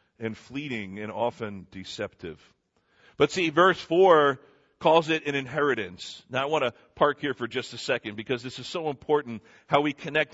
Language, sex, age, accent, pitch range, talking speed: English, male, 40-59, American, 130-175 Hz, 180 wpm